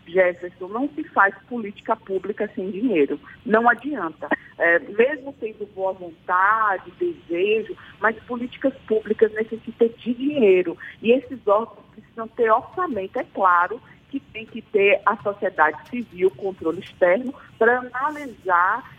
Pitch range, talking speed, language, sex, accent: 185-250 Hz, 130 wpm, Portuguese, female, Brazilian